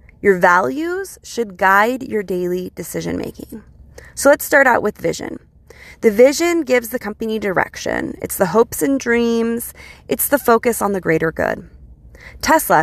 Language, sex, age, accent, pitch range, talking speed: English, female, 20-39, American, 180-235 Hz, 150 wpm